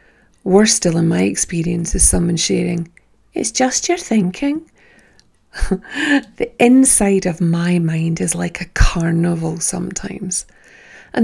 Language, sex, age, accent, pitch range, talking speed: English, female, 40-59, British, 170-220 Hz, 125 wpm